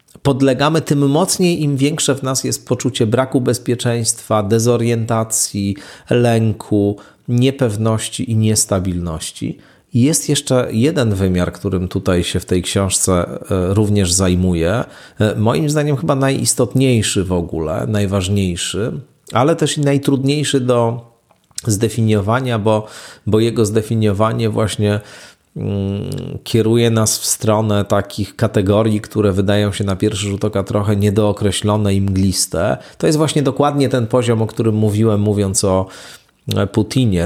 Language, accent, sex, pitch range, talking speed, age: Polish, native, male, 100-125 Hz, 120 wpm, 40-59